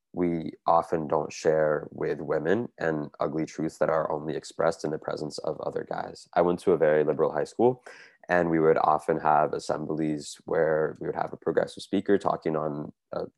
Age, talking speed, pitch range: 20-39, 195 wpm, 80-90 Hz